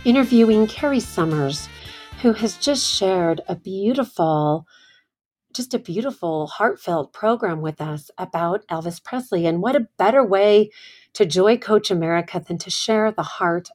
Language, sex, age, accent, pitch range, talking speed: English, female, 40-59, American, 180-225 Hz, 145 wpm